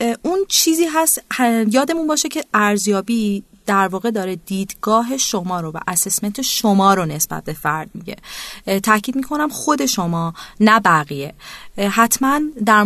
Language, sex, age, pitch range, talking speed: Persian, female, 30-49, 175-250 Hz, 135 wpm